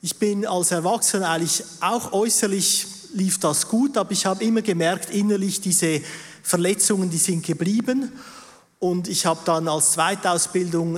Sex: male